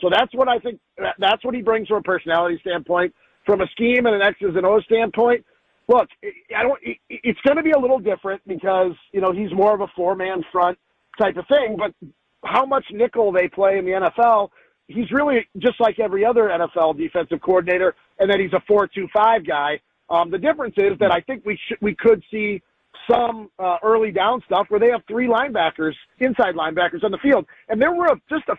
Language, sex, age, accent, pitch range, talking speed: English, male, 40-59, American, 180-230 Hz, 210 wpm